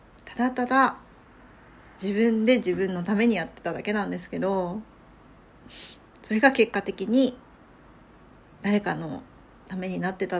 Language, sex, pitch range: Japanese, female, 195-260 Hz